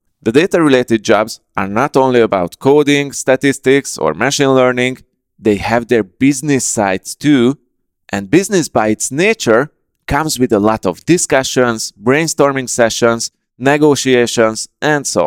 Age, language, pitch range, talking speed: 30-49, English, 105-140 Hz, 135 wpm